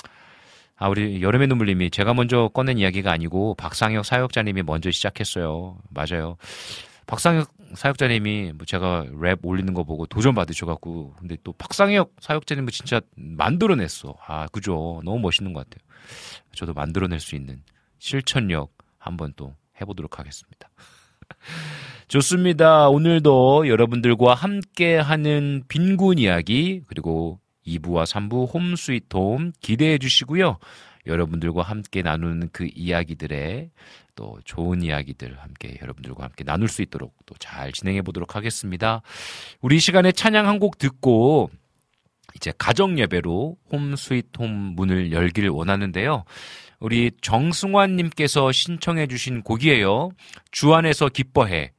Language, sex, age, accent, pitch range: Korean, male, 40-59, native, 85-145 Hz